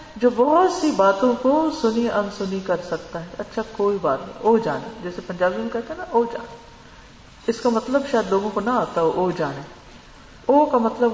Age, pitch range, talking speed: 50-69, 180-275 Hz, 210 wpm